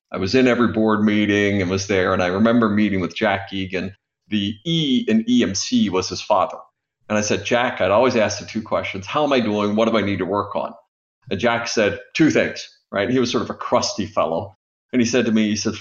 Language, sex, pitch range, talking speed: English, male, 105-135 Hz, 245 wpm